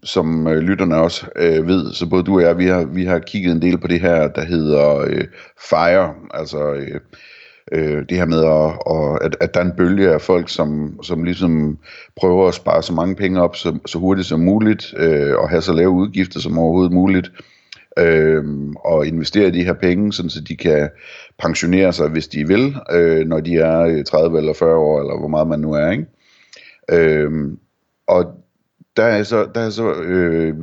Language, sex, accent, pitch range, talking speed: Danish, male, native, 80-95 Hz, 200 wpm